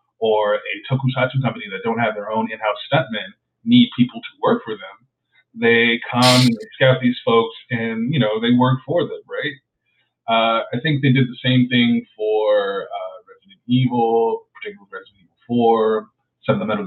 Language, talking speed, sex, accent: English, 180 wpm, male, American